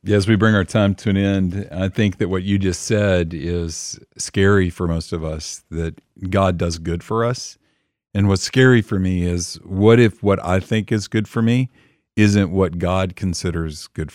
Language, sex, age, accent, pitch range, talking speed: English, male, 50-69, American, 85-100 Hz, 200 wpm